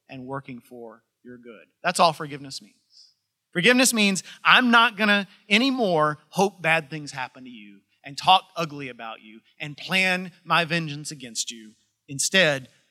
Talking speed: 160 wpm